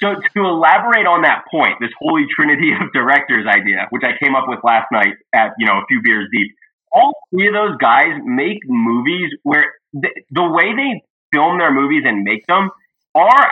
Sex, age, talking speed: male, 20-39, 200 wpm